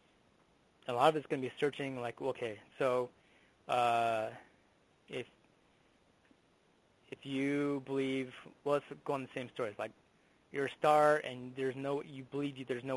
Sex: male